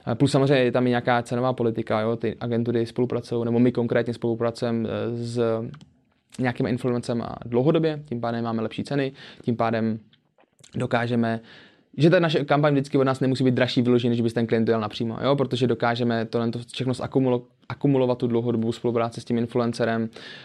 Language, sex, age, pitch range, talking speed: Czech, male, 20-39, 115-130 Hz, 175 wpm